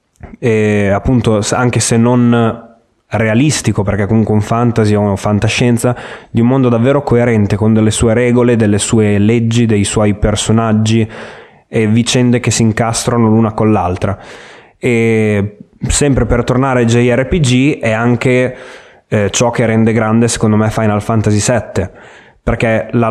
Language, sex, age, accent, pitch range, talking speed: Italian, male, 20-39, native, 110-125 Hz, 145 wpm